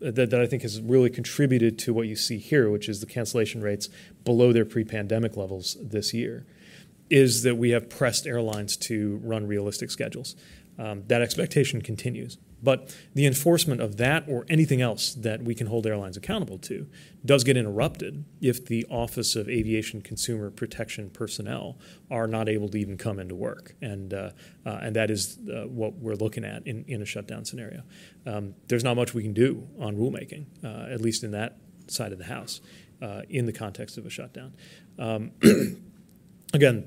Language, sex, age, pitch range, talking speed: English, male, 30-49, 105-130 Hz, 185 wpm